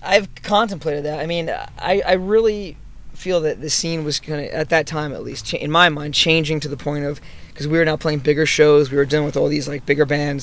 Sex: male